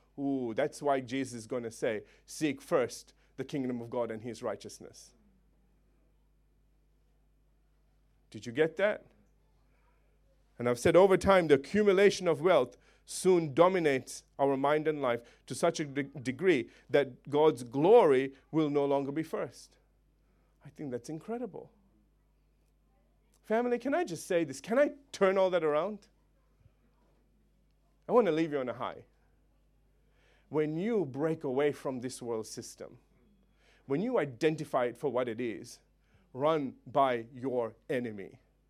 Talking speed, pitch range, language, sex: 145 wpm, 130-195 Hz, English, male